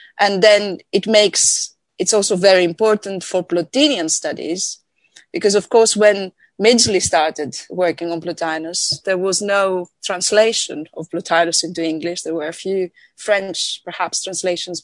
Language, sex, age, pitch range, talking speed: English, female, 30-49, 175-215 Hz, 140 wpm